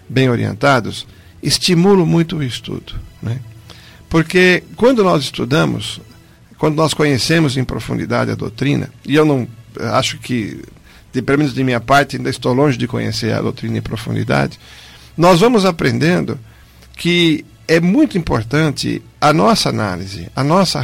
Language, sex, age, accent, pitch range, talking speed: Portuguese, male, 60-79, Brazilian, 115-160 Hz, 145 wpm